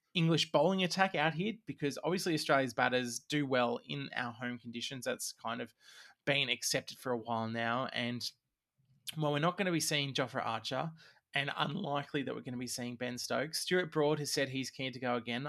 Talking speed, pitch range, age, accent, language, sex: 205 wpm, 125-155 Hz, 20-39, Australian, English, male